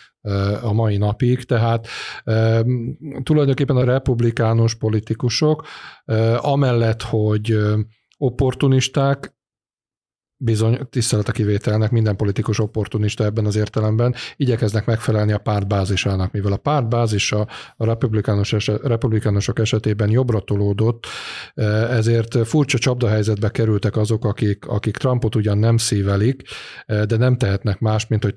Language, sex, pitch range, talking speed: Hungarian, male, 105-125 Hz, 105 wpm